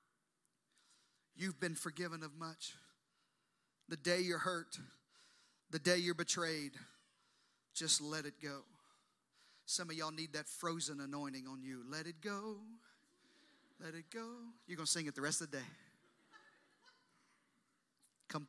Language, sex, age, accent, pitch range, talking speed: English, male, 40-59, American, 145-180 Hz, 140 wpm